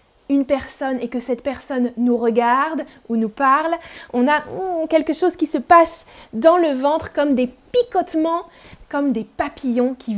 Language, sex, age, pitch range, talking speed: French, female, 20-39, 245-320 Hz, 165 wpm